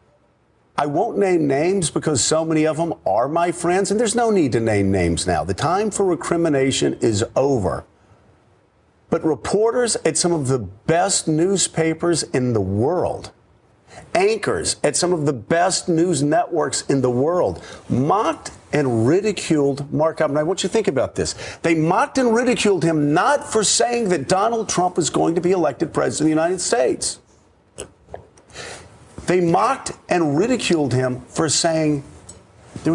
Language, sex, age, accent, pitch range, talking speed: German, male, 50-69, American, 115-175 Hz, 160 wpm